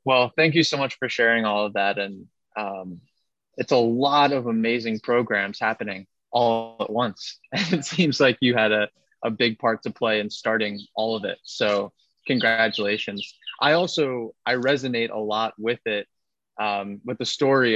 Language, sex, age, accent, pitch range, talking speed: English, male, 20-39, American, 105-130 Hz, 180 wpm